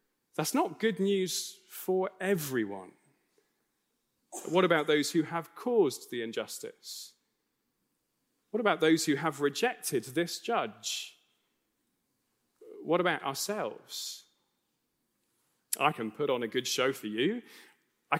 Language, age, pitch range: English, 30-49, 140-200 Hz